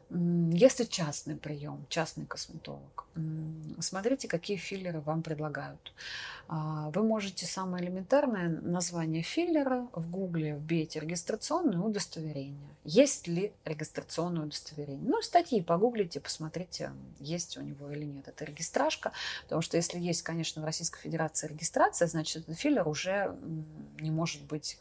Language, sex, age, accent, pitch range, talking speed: Russian, female, 30-49, native, 150-180 Hz, 125 wpm